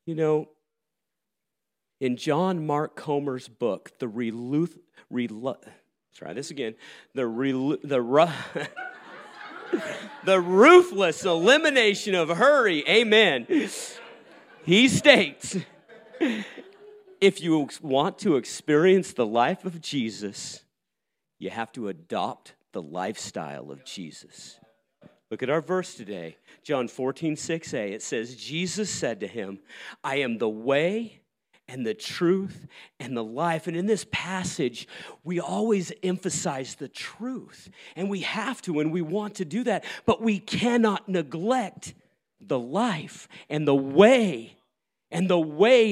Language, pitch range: English, 145-205 Hz